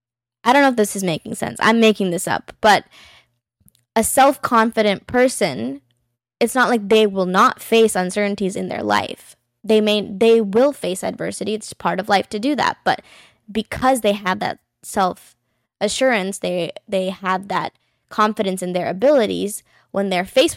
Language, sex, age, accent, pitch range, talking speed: English, female, 10-29, American, 180-220 Hz, 165 wpm